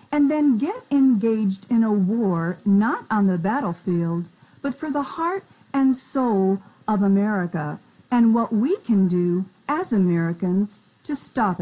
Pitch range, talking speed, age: 185-260 Hz, 145 wpm, 50-69